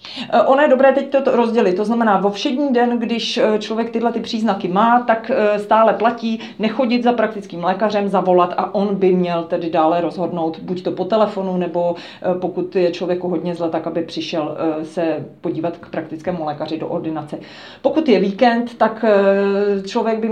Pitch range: 180-215 Hz